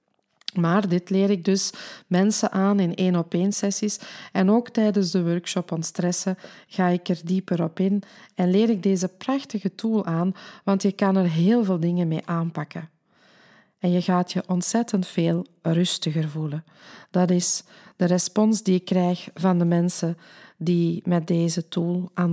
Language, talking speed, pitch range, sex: Dutch, 170 wpm, 175-205 Hz, female